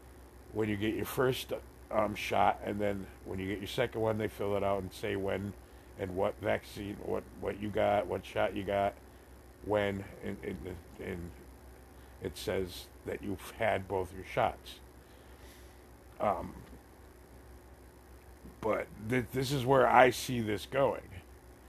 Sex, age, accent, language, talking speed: male, 60-79, American, English, 150 wpm